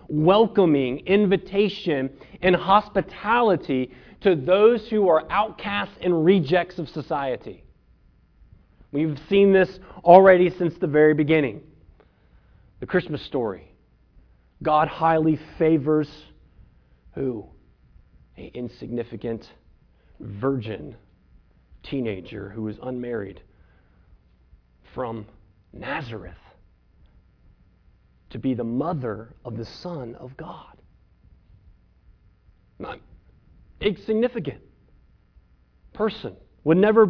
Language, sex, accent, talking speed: English, male, American, 80 wpm